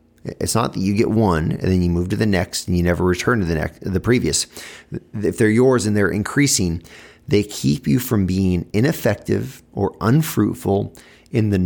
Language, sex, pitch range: English, male, 95-115 Hz